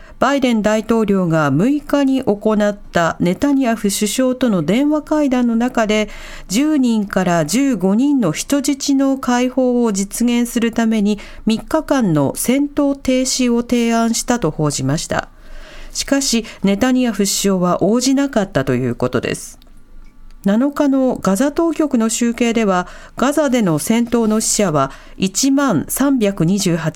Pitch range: 185-265 Hz